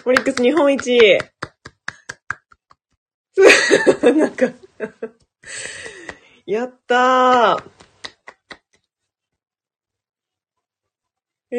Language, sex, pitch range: Japanese, female, 165-270 Hz